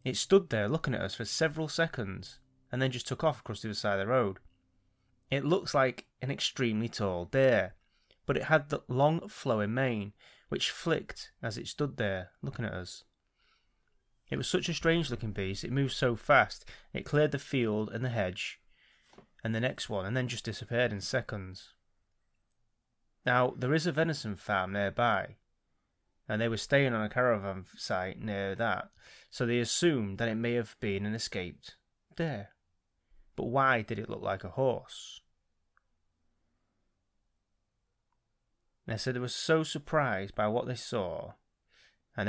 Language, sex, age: English, male, 30-49